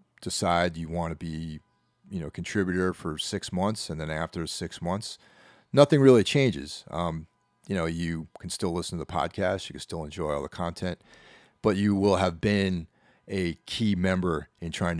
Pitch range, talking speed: 80-100 Hz, 185 wpm